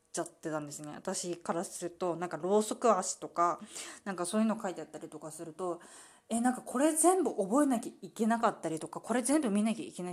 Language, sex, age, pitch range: Japanese, female, 20-39, 175-270 Hz